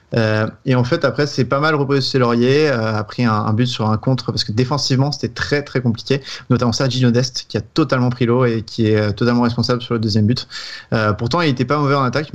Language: French